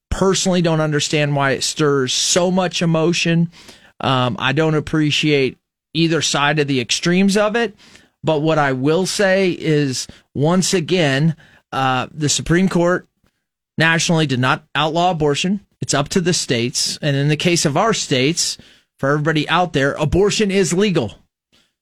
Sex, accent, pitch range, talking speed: male, American, 145-180 Hz, 155 wpm